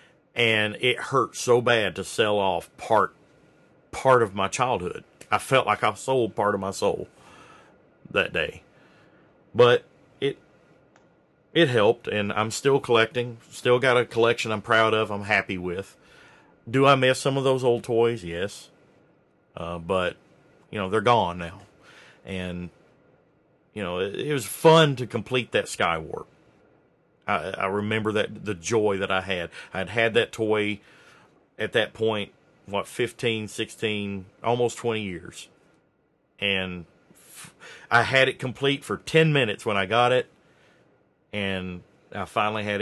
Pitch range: 95-130 Hz